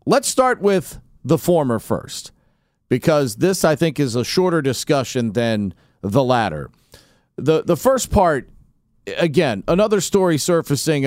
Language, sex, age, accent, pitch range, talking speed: English, male, 40-59, American, 130-185 Hz, 135 wpm